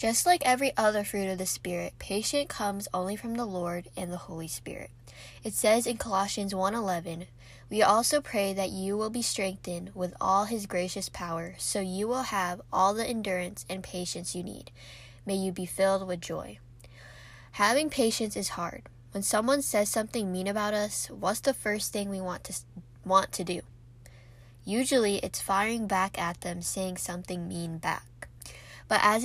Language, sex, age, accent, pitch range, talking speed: English, female, 10-29, American, 165-215 Hz, 175 wpm